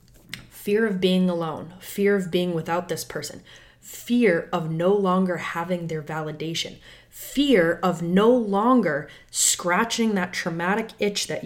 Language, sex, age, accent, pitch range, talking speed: English, female, 20-39, American, 155-195 Hz, 135 wpm